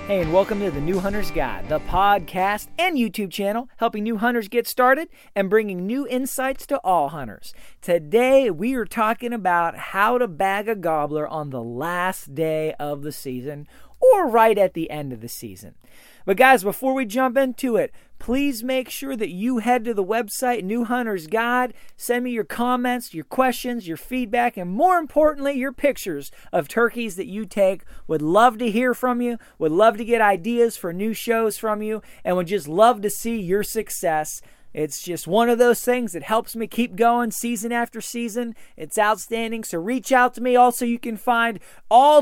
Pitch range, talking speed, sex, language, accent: 160-235 Hz, 195 wpm, male, English, American